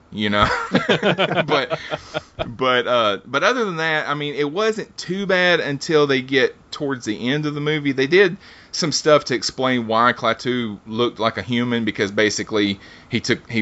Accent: American